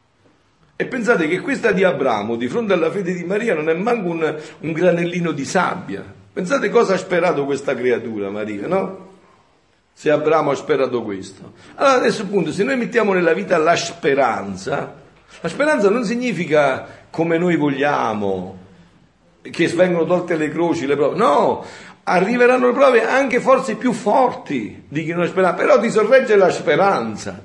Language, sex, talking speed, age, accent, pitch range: Italian, male, 165 wpm, 50-69, native, 140-205 Hz